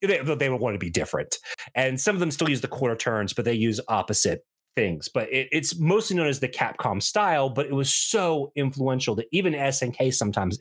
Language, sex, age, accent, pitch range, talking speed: English, male, 30-49, American, 120-165 Hz, 220 wpm